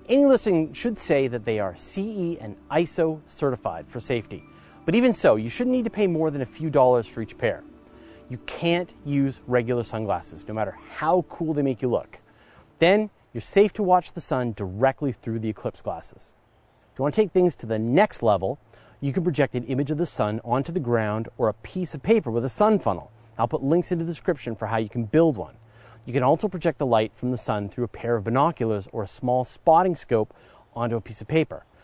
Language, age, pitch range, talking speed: English, 30-49, 115-165 Hz, 225 wpm